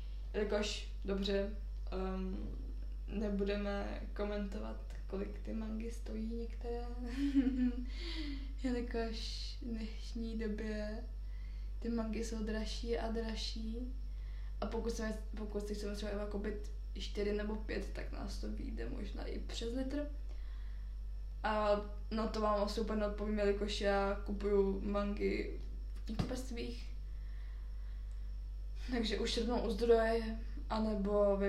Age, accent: 20-39, native